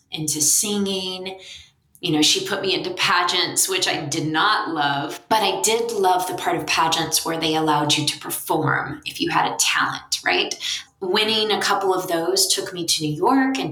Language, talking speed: English, 195 wpm